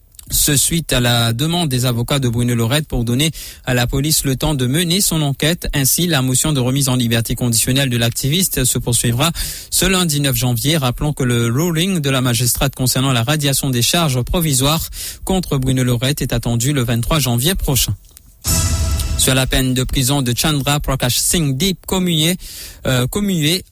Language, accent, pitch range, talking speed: English, French, 125-160 Hz, 180 wpm